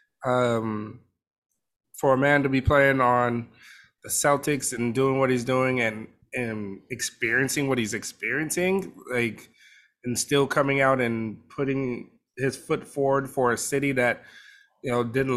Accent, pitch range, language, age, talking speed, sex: American, 120-140 Hz, English, 20-39, 150 wpm, male